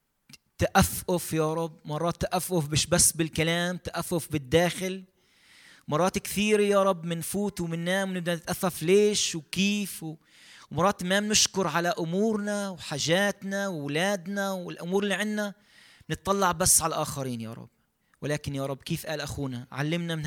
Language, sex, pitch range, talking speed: Arabic, male, 145-195 Hz, 140 wpm